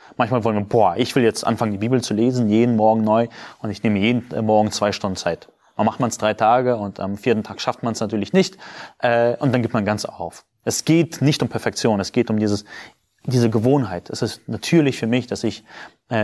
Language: German